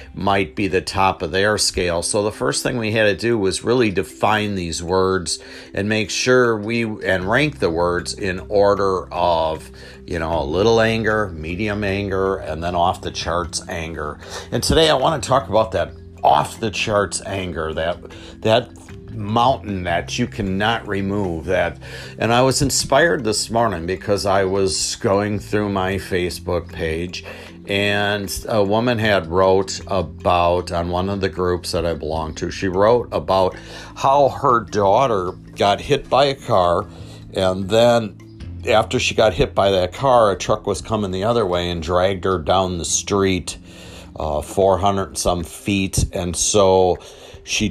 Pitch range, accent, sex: 85-105 Hz, American, male